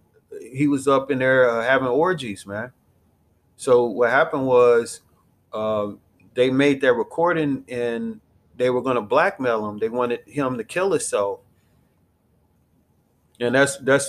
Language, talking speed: English, 140 wpm